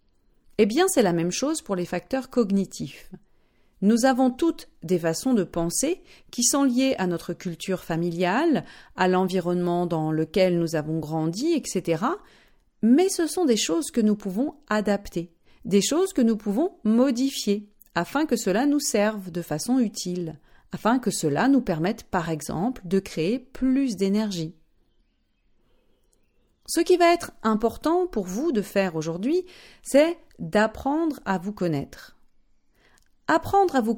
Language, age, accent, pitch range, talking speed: French, 40-59, French, 175-270 Hz, 150 wpm